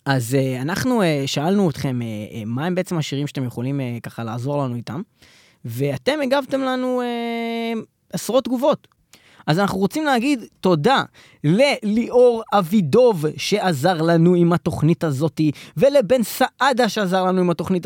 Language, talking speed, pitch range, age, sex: Hebrew, 145 wpm, 175-260 Hz, 20-39, male